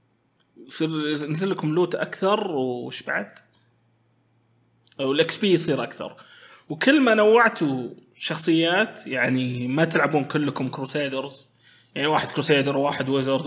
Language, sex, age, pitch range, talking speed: Arabic, male, 20-39, 125-165 Hz, 105 wpm